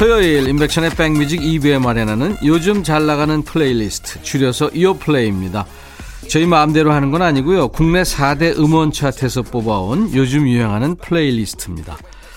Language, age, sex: Korean, 40-59, male